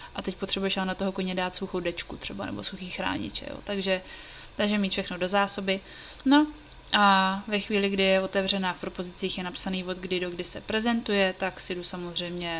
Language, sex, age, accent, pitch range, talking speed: Czech, female, 20-39, native, 180-195 Hz, 200 wpm